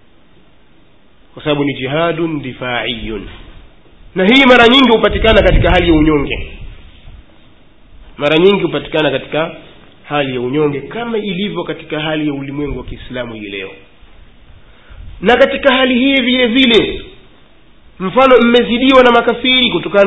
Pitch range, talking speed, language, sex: 135-205 Hz, 125 wpm, Swahili, male